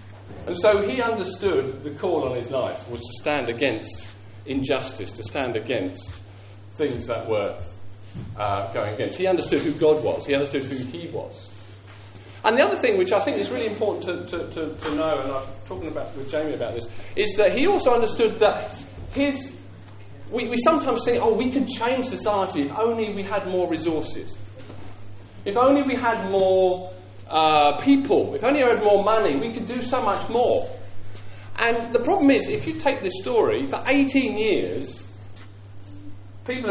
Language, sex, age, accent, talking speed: English, male, 40-59, British, 180 wpm